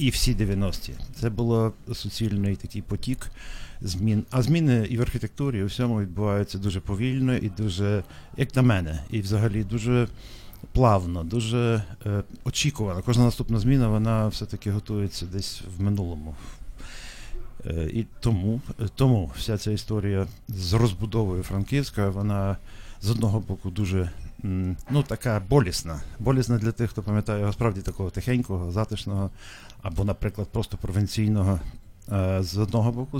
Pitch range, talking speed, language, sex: 100-120 Hz, 140 wpm, Ukrainian, male